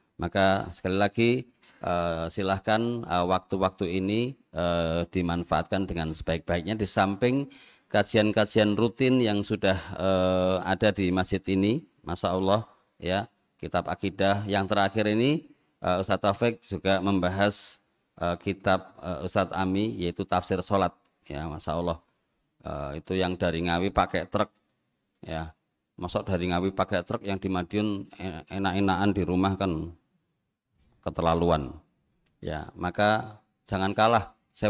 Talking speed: 125 wpm